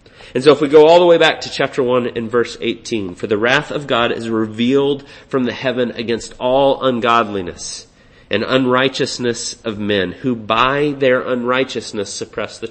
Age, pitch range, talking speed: 30-49, 120-140 Hz, 180 wpm